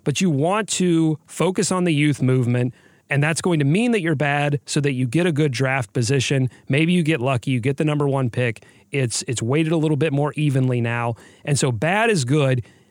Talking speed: 230 wpm